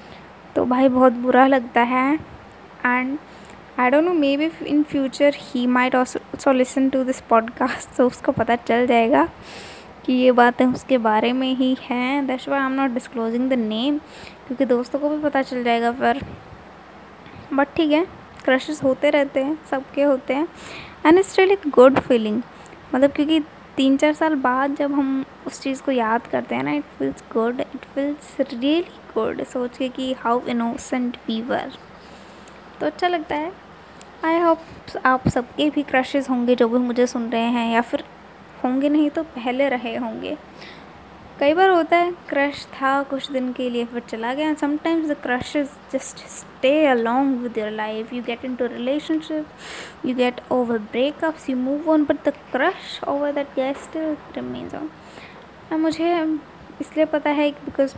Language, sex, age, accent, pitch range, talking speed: Hindi, female, 20-39, native, 250-295 Hz, 165 wpm